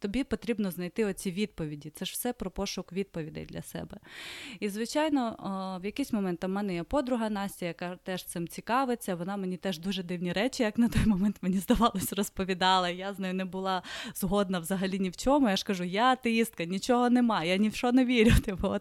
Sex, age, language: female, 20-39, Ukrainian